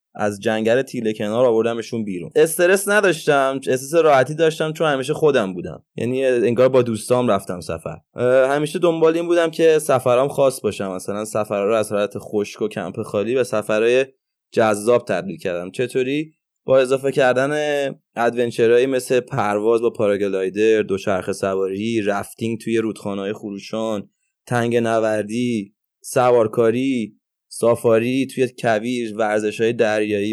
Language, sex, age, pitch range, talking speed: Persian, male, 20-39, 110-145 Hz, 130 wpm